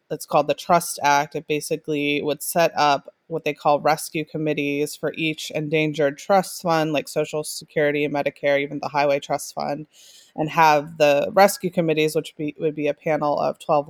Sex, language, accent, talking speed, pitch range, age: female, English, American, 180 wpm, 150-175 Hz, 20-39